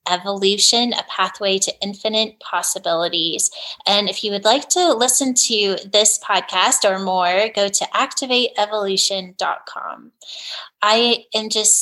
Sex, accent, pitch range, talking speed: female, American, 190-235 Hz, 120 wpm